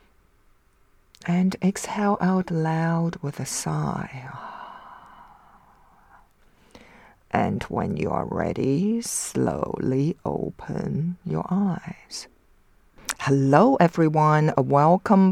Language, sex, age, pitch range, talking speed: English, female, 50-69, 140-170 Hz, 75 wpm